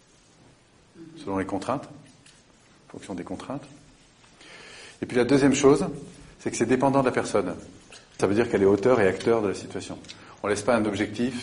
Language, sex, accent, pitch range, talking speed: French, male, French, 95-135 Hz, 190 wpm